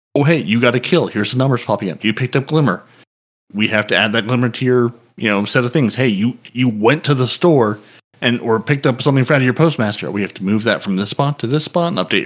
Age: 30-49